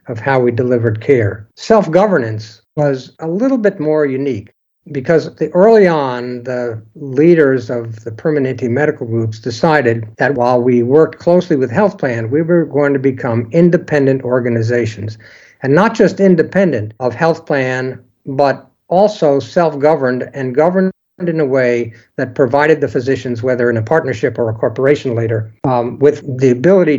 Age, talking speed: 60-79, 155 wpm